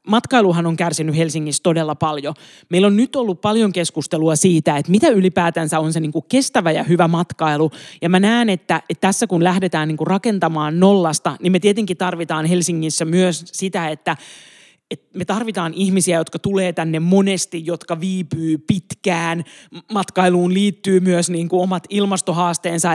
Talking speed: 145 wpm